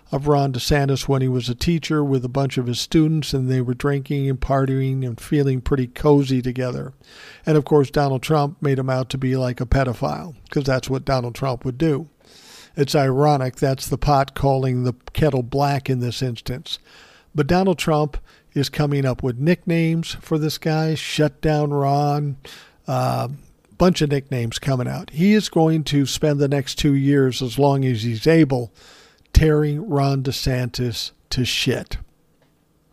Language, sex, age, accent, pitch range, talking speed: English, male, 50-69, American, 130-150 Hz, 175 wpm